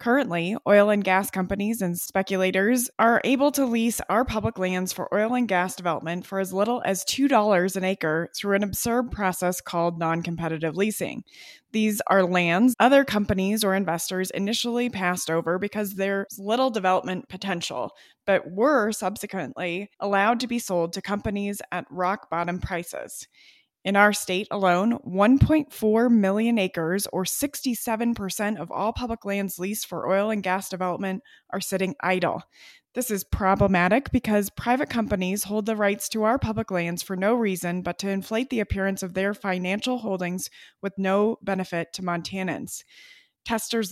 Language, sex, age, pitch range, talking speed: English, female, 20-39, 185-220 Hz, 155 wpm